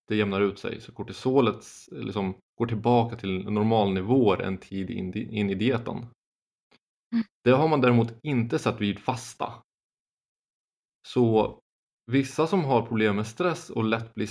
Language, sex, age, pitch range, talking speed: Swedish, male, 20-39, 95-120 Hz, 145 wpm